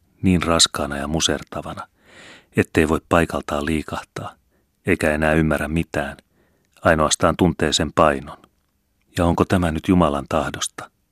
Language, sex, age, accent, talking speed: Finnish, male, 30-49, native, 120 wpm